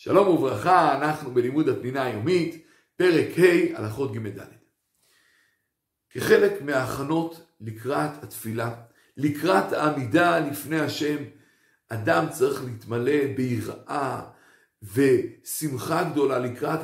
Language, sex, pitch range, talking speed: Hebrew, male, 120-165 Hz, 95 wpm